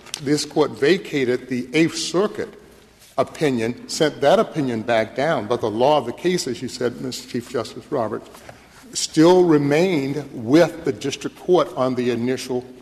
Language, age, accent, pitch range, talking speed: English, 60-79, American, 125-160 Hz, 160 wpm